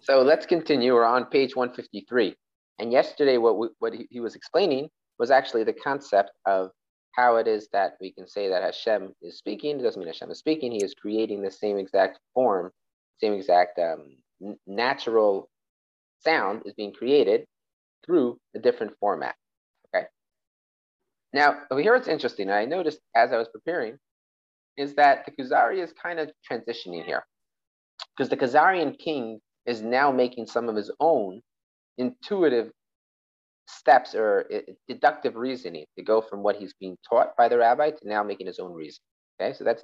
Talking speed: 170 wpm